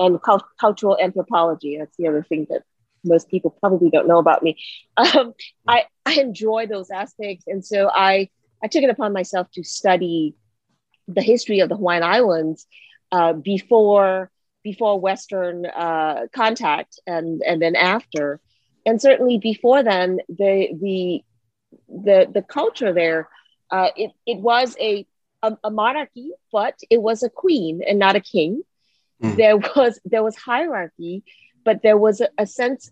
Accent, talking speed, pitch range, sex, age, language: American, 155 wpm, 180-235 Hz, female, 40-59, English